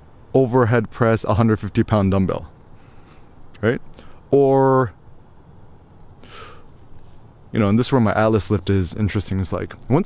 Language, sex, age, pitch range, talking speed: English, male, 20-39, 100-120 Hz, 125 wpm